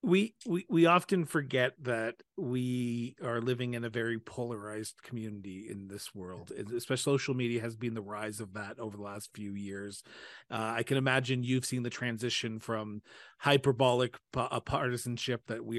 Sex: male